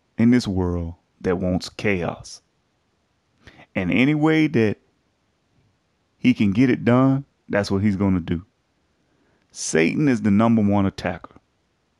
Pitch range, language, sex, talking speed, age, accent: 100-130 Hz, English, male, 135 wpm, 30-49, American